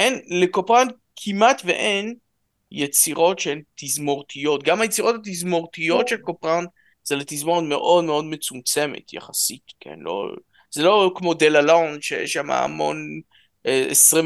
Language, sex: Hebrew, male